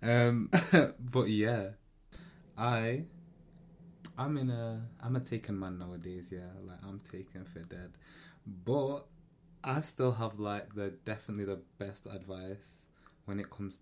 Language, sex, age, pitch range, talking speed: English, male, 20-39, 90-115 Hz, 135 wpm